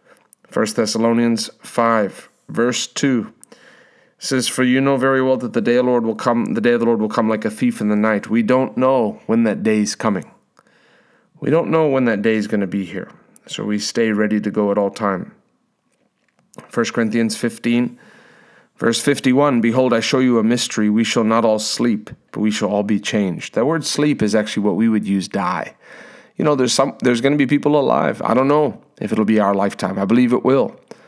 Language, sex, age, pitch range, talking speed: English, male, 40-59, 110-130 Hz, 220 wpm